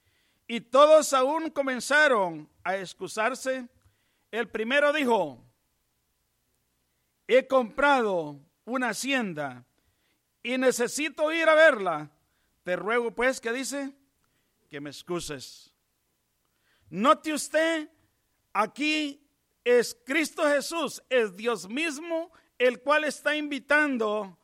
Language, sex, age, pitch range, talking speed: English, male, 50-69, 180-275 Hz, 95 wpm